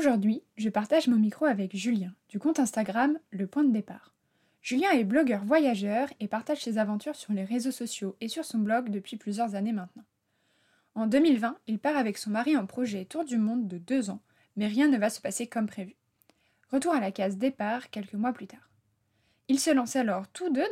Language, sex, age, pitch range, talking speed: French, female, 20-39, 205-265 Hz, 210 wpm